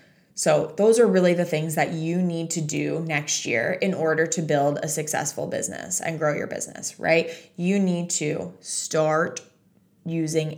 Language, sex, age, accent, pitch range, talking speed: English, female, 20-39, American, 155-175 Hz, 170 wpm